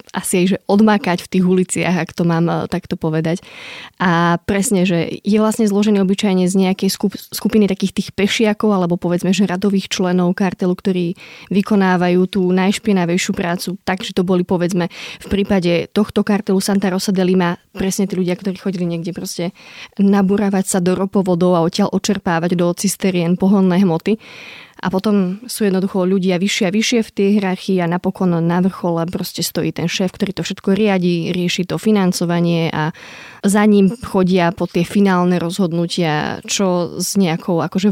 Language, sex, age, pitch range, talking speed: Slovak, female, 20-39, 175-200 Hz, 170 wpm